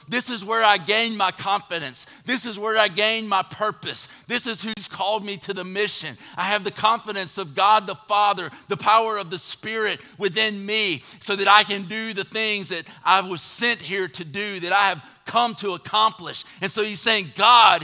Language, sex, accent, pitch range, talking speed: English, male, American, 180-220 Hz, 210 wpm